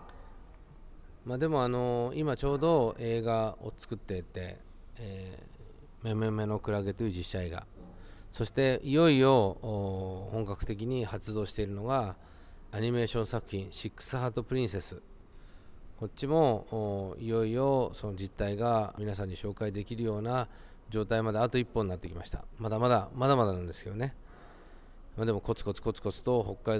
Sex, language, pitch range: male, Japanese, 95-115 Hz